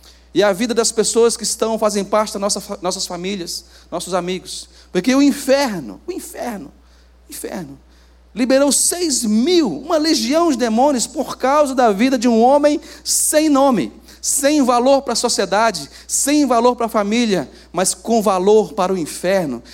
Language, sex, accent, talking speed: Portuguese, male, Brazilian, 160 wpm